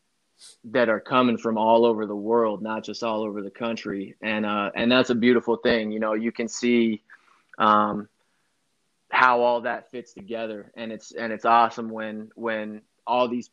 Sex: male